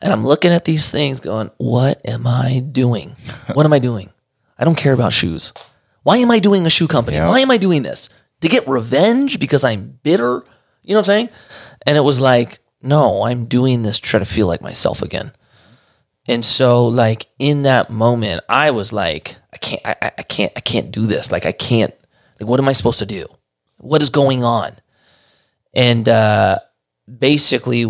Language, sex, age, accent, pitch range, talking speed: English, male, 30-49, American, 110-135 Hz, 200 wpm